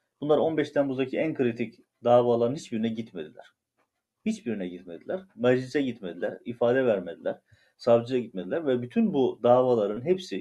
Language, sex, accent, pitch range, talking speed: Turkish, male, native, 110-140 Hz, 120 wpm